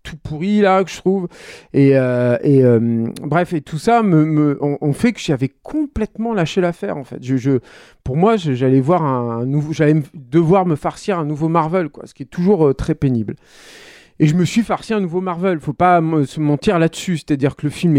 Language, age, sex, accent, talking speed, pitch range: French, 40-59, male, French, 240 wpm, 130-170 Hz